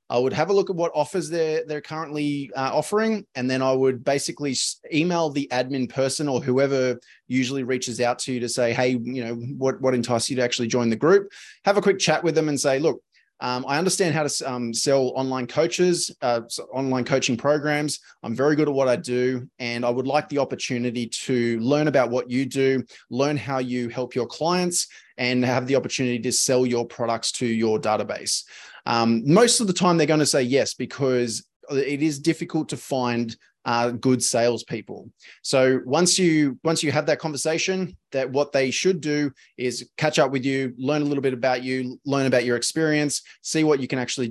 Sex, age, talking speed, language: male, 20-39, 205 wpm, English